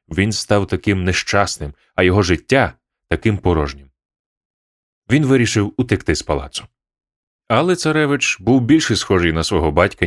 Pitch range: 90-125 Hz